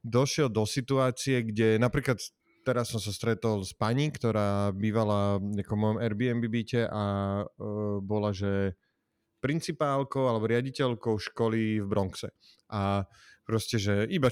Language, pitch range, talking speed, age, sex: Slovak, 105-125 Hz, 125 wpm, 30-49, male